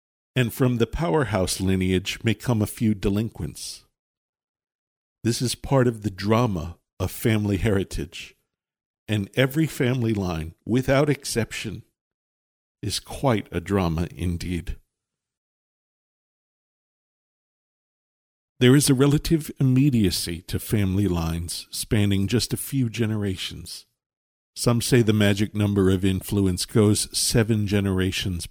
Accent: American